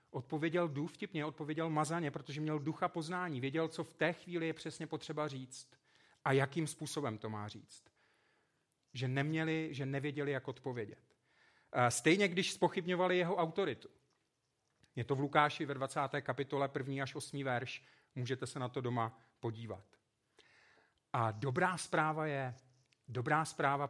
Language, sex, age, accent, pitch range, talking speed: Czech, male, 40-59, native, 130-155 Hz, 145 wpm